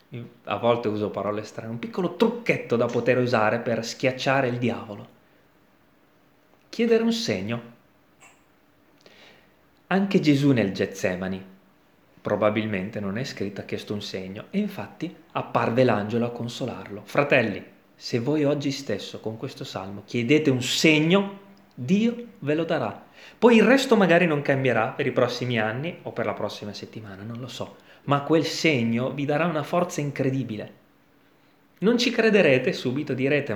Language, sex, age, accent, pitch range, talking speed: Italian, male, 30-49, native, 110-150 Hz, 145 wpm